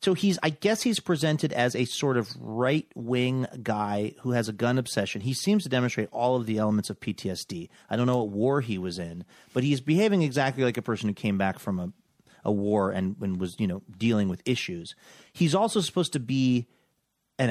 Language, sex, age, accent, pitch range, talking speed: English, male, 30-49, American, 115-175 Hz, 220 wpm